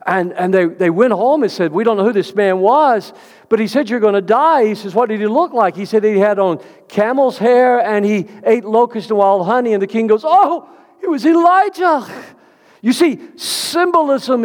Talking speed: 225 wpm